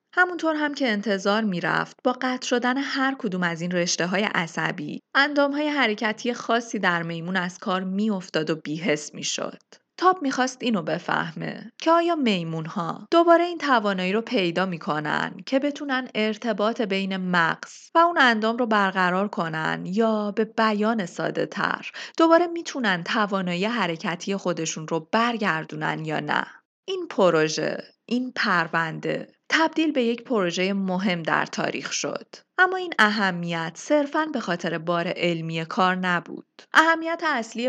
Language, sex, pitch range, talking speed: Persian, female, 175-255 Hz, 150 wpm